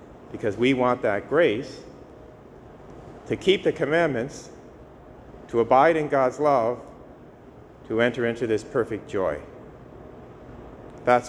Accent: American